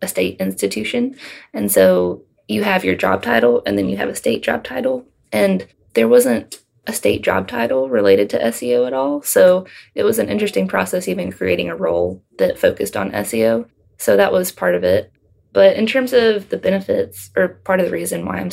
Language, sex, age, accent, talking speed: English, female, 20-39, American, 205 wpm